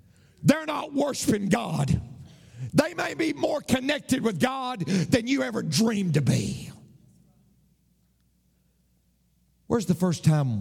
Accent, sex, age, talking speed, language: American, male, 50-69, 120 wpm, English